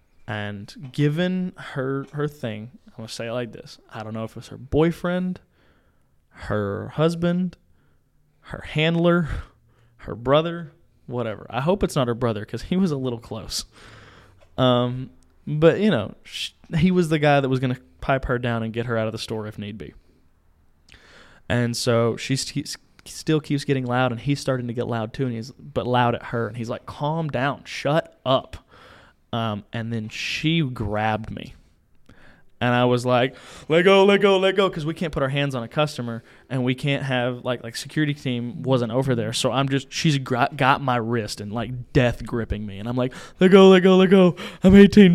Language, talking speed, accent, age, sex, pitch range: English, 200 wpm, American, 20-39, male, 115-155 Hz